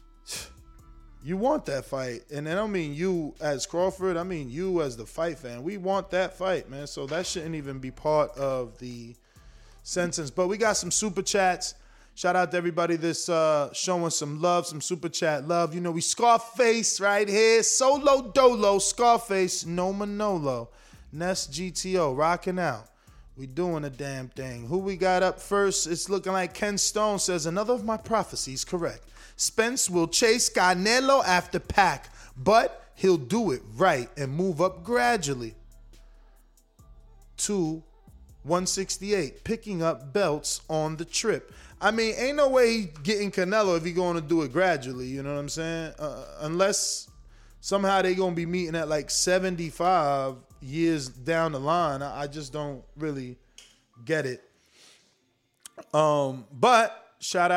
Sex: male